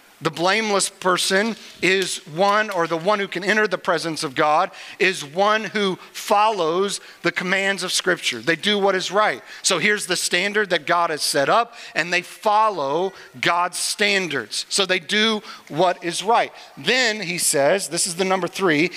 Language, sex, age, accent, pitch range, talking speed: English, male, 50-69, American, 170-215 Hz, 175 wpm